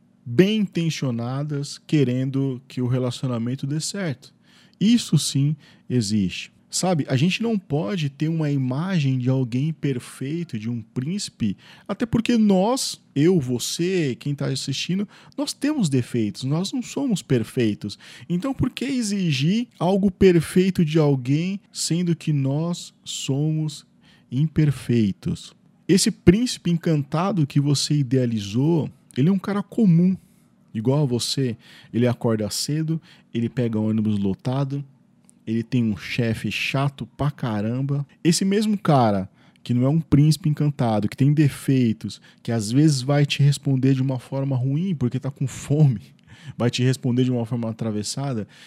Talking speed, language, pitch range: 140 wpm, Portuguese, 120-165 Hz